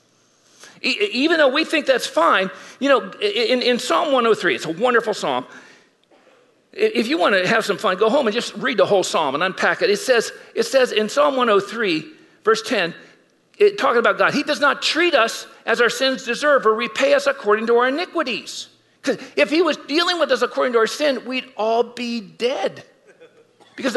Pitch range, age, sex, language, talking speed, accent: 225-330 Hz, 50-69, male, English, 195 wpm, American